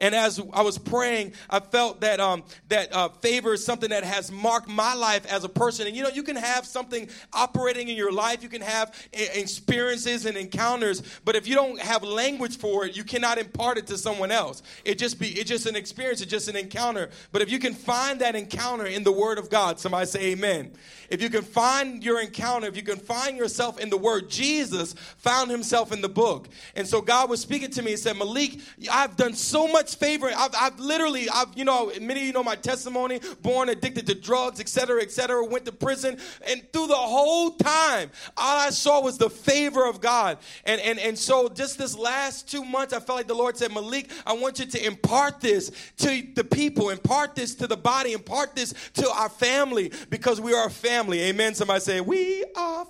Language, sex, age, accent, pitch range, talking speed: English, male, 40-59, American, 215-260 Hz, 220 wpm